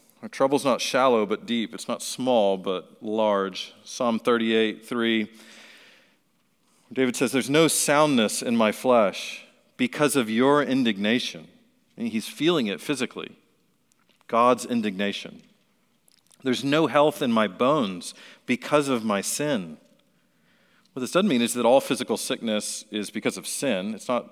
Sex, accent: male, American